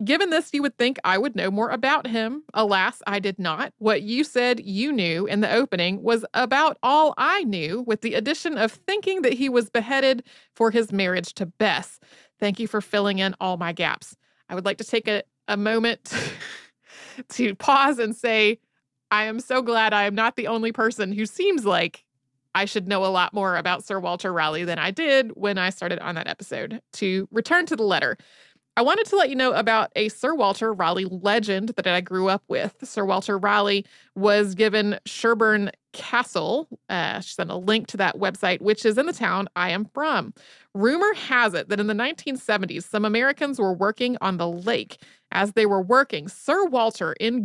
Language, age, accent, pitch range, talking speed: English, 30-49, American, 195-250 Hz, 200 wpm